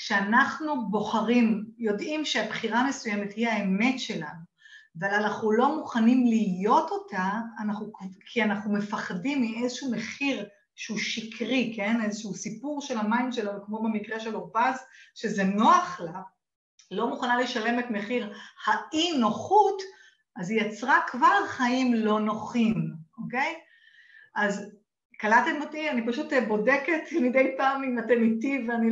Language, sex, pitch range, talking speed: Hebrew, female, 210-275 Hz, 125 wpm